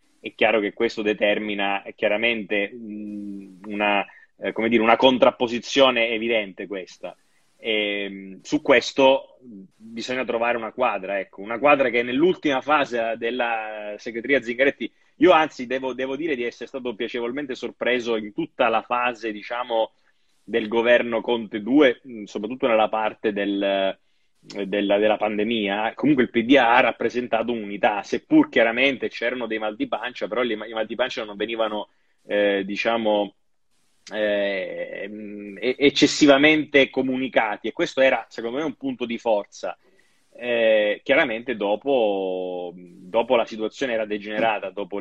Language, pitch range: Italian, 105-125 Hz